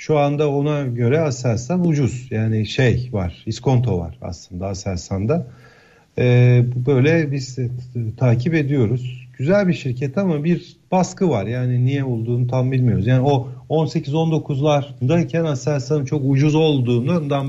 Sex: male